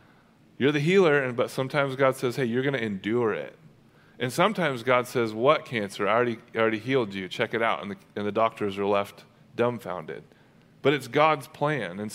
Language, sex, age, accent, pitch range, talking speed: English, male, 30-49, American, 120-150 Hz, 200 wpm